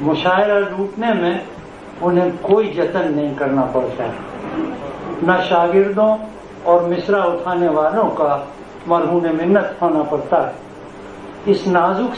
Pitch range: 165-200 Hz